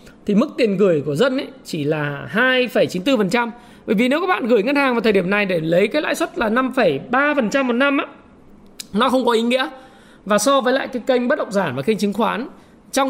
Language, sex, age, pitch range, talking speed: Vietnamese, male, 20-39, 195-250 Hz, 250 wpm